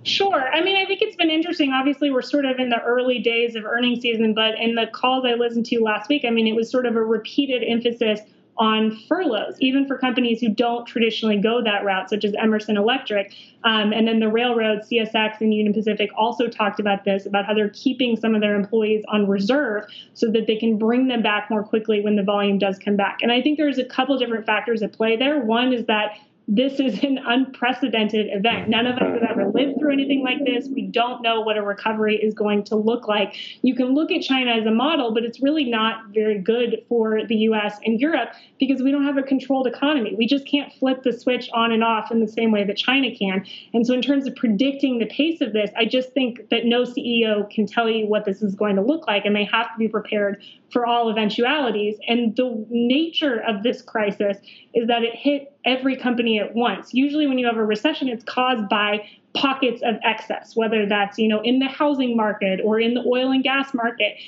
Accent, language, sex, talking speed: American, English, female, 230 wpm